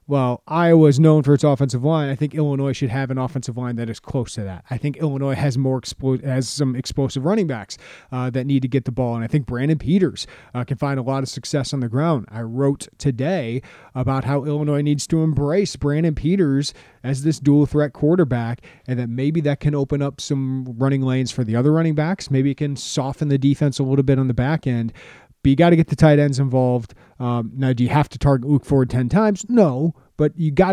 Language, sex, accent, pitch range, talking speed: English, male, American, 125-150 Hz, 230 wpm